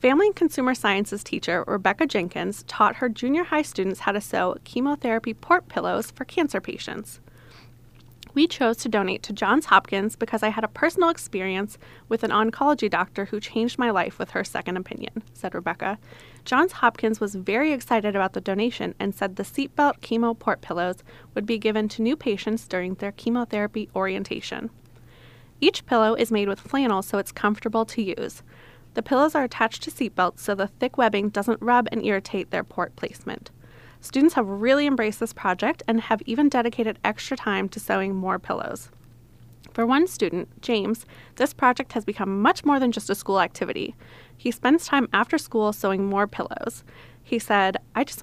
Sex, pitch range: female, 200-250 Hz